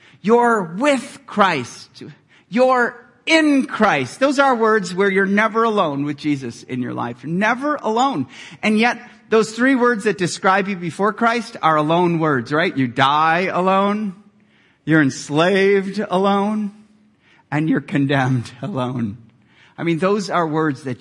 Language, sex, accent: English, male, American